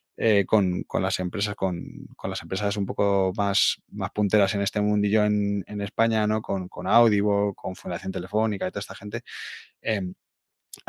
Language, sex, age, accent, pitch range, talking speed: Spanish, male, 20-39, Spanish, 100-125 Hz, 175 wpm